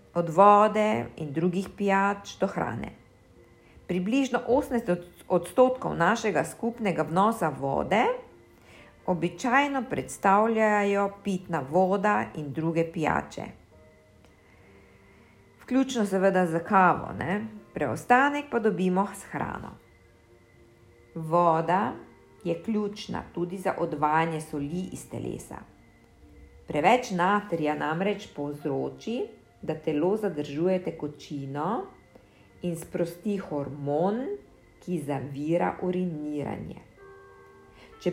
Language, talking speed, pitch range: German, 85 wpm, 150-225 Hz